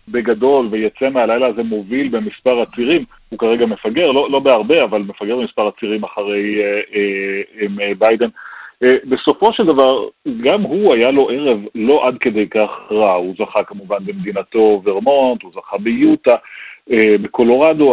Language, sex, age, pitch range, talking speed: Hebrew, male, 40-59, 105-140 Hz, 155 wpm